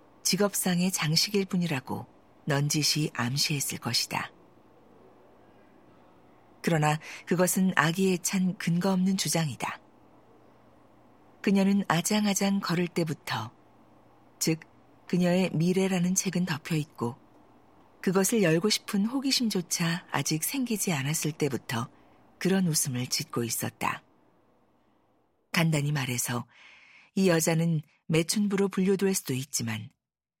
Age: 40-59